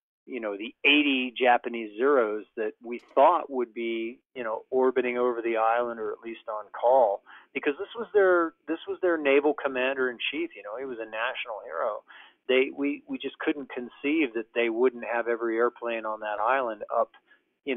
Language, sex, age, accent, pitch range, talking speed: English, male, 40-59, American, 115-130 Hz, 195 wpm